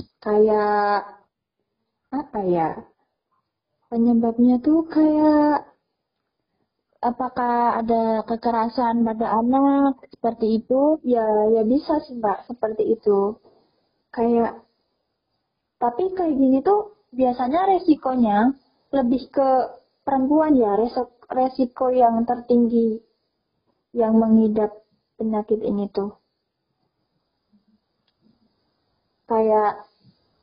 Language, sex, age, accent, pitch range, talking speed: Indonesian, female, 20-39, native, 220-275 Hz, 80 wpm